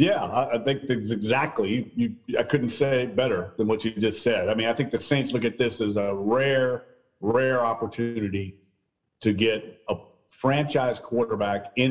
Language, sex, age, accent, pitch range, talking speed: English, male, 40-59, American, 105-130 Hz, 180 wpm